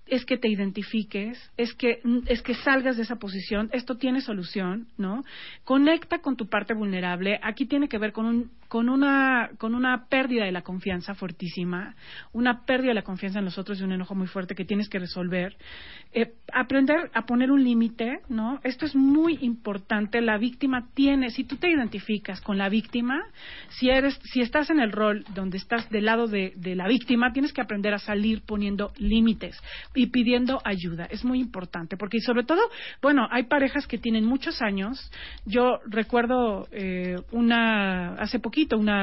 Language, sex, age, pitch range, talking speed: Spanish, female, 40-59, 205-255 Hz, 180 wpm